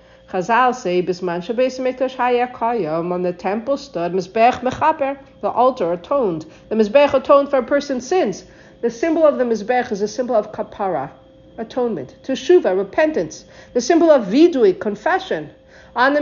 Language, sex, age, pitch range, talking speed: English, female, 50-69, 190-260 Hz, 125 wpm